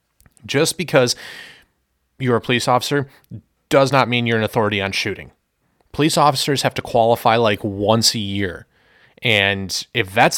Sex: male